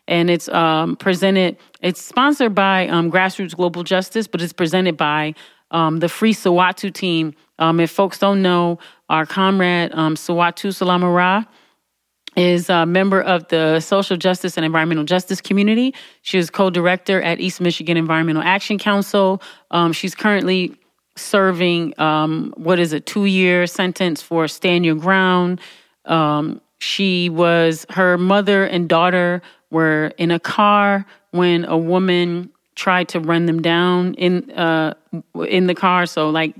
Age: 30-49